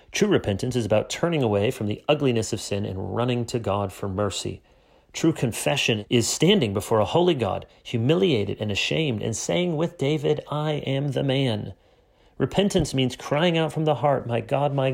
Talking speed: 185 wpm